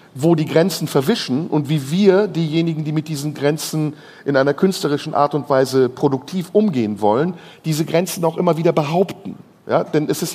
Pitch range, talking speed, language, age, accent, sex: 145-185 Hz, 175 wpm, German, 50-69, German, male